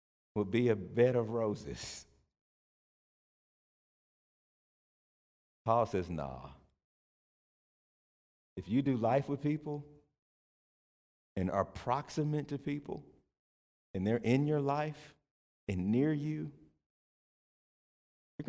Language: English